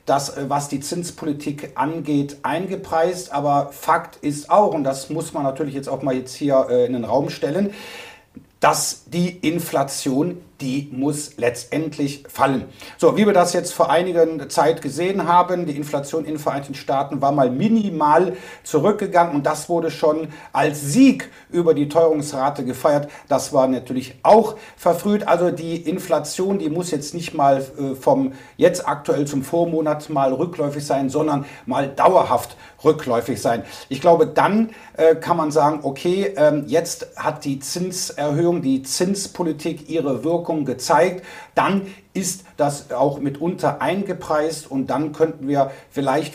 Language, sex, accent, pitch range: German, male, German, 140-175 Hz